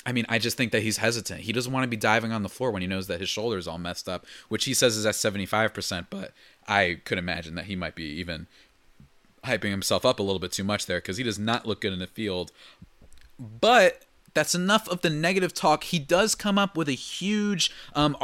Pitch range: 100-130 Hz